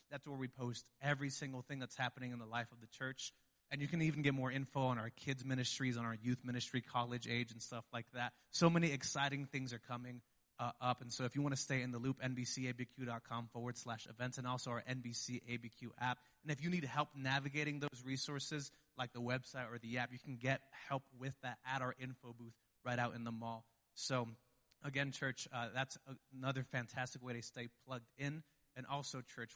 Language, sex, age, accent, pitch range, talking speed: English, male, 30-49, American, 120-135 Hz, 215 wpm